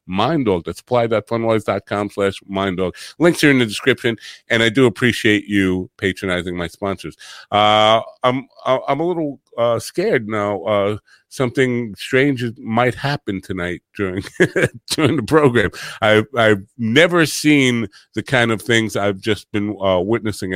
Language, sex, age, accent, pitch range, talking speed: English, male, 50-69, American, 95-120 Hz, 150 wpm